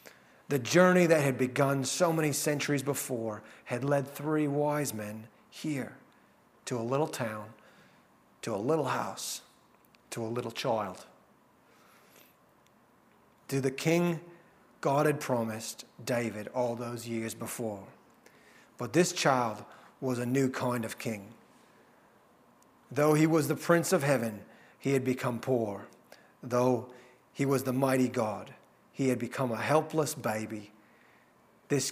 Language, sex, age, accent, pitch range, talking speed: English, male, 40-59, American, 115-145 Hz, 135 wpm